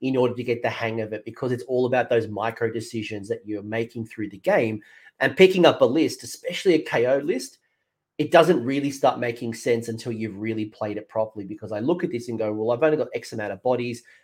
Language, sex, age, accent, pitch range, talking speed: English, male, 30-49, Australian, 110-135 Hz, 240 wpm